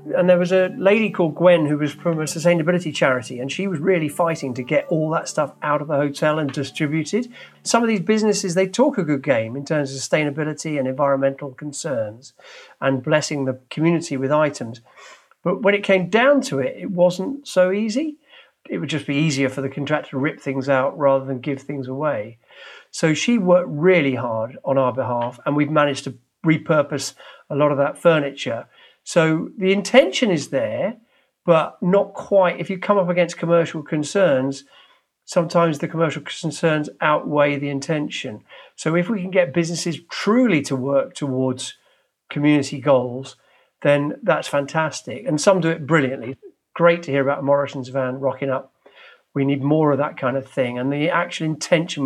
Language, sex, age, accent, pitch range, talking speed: English, male, 50-69, British, 140-175 Hz, 185 wpm